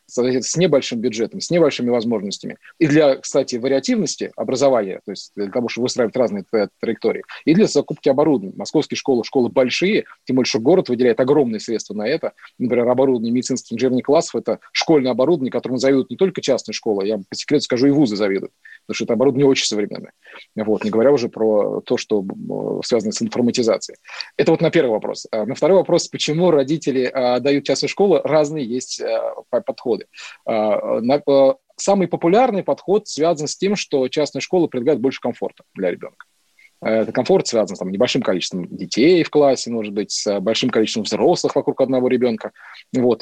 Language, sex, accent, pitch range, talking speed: Russian, male, native, 120-150 Hz, 170 wpm